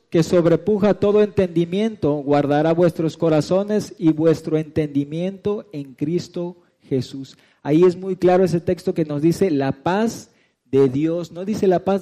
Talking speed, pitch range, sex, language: 150 wpm, 150-185 Hz, male, Spanish